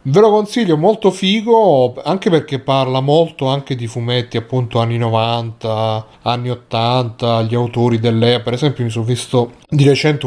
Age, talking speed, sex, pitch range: 30-49, 160 wpm, male, 110-130 Hz